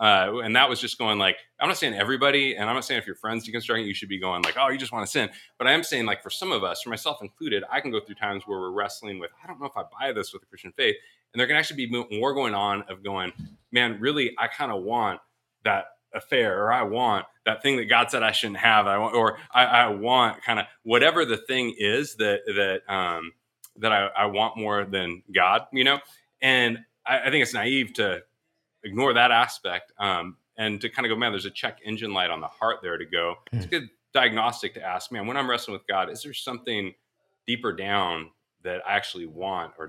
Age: 20-39